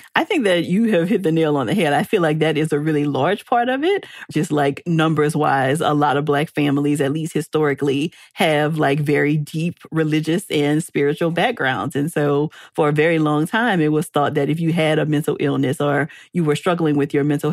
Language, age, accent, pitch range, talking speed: English, 30-49, American, 145-170 Hz, 225 wpm